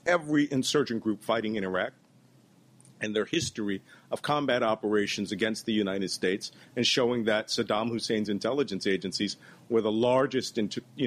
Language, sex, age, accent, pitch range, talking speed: English, male, 40-59, American, 100-125 Hz, 145 wpm